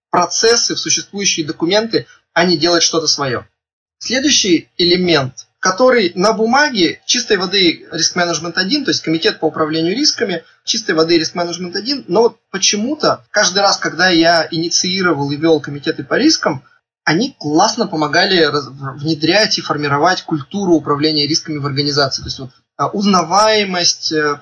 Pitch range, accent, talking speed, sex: 150-195 Hz, native, 140 wpm, male